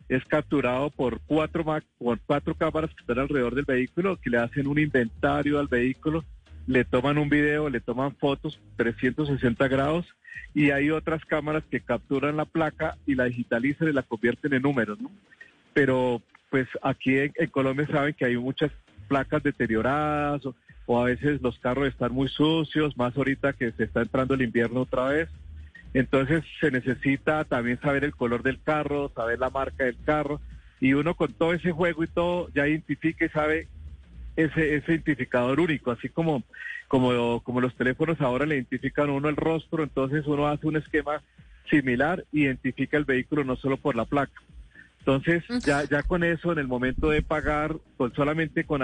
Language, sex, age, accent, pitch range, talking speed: Spanish, male, 40-59, Colombian, 125-155 Hz, 175 wpm